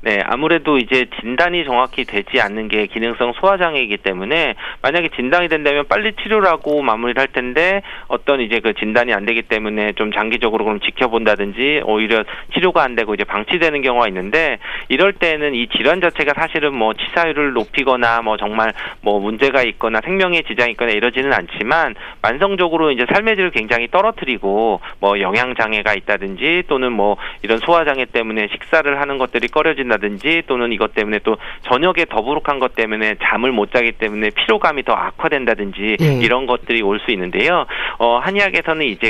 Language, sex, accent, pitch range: Korean, male, native, 110-160 Hz